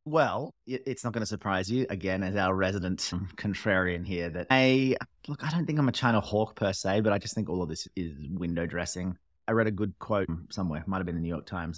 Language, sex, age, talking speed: English, male, 30-49, 245 wpm